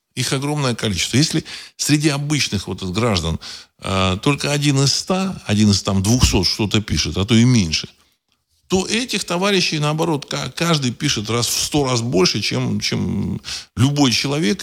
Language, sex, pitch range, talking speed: Russian, male, 90-140 Hz, 150 wpm